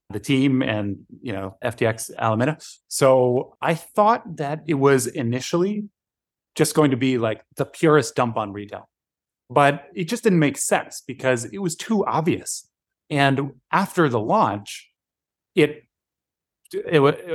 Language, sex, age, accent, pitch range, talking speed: English, male, 30-49, American, 115-150 Hz, 140 wpm